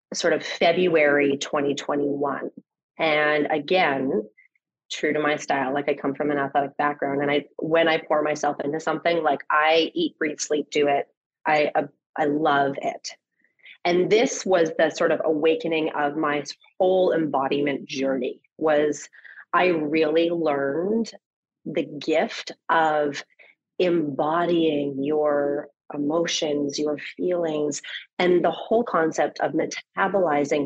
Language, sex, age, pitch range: English, female, 30-49, 145-160 Hz